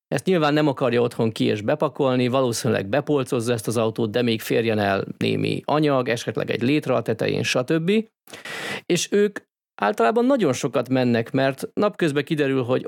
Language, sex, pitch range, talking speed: Hungarian, male, 115-150 Hz, 165 wpm